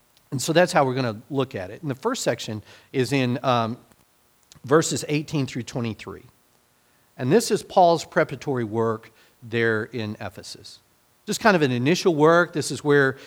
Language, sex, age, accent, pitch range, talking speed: English, male, 40-59, American, 125-165 Hz, 175 wpm